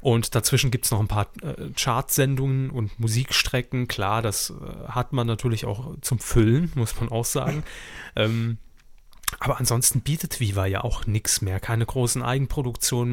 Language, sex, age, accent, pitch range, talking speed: German, male, 30-49, German, 110-135 Hz, 165 wpm